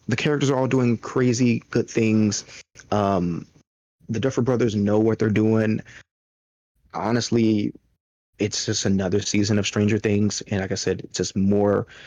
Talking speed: 155 wpm